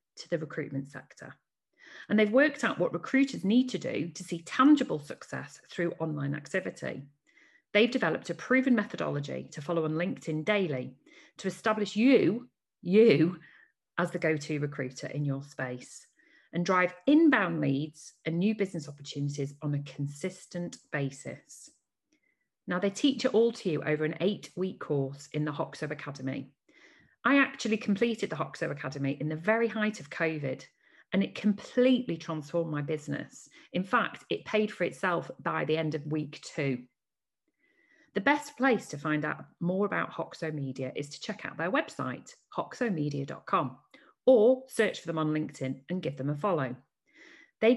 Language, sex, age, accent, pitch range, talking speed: English, female, 40-59, British, 150-230 Hz, 160 wpm